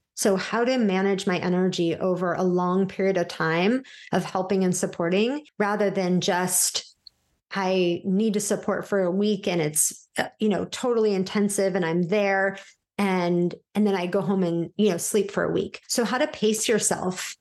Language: English